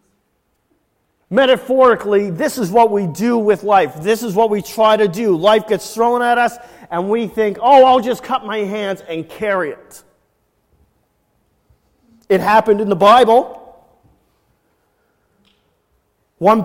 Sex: male